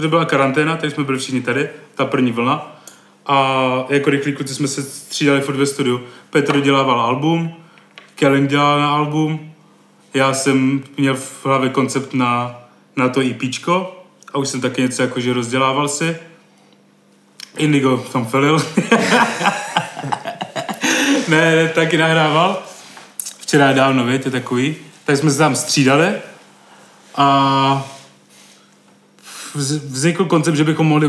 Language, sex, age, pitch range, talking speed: Czech, male, 30-49, 130-150 Hz, 130 wpm